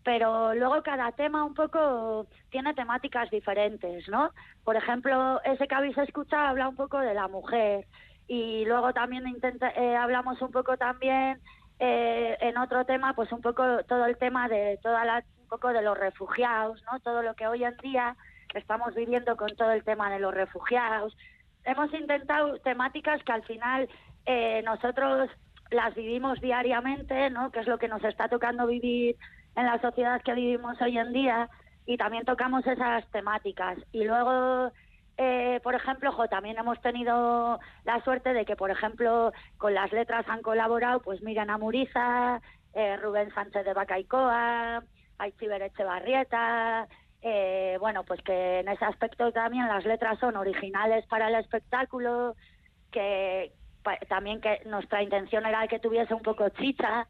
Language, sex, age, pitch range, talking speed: Spanish, female, 20-39, 210-250 Hz, 165 wpm